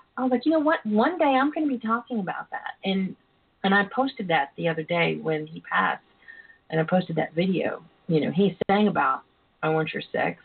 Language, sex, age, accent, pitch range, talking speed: English, female, 40-59, American, 165-215 Hz, 225 wpm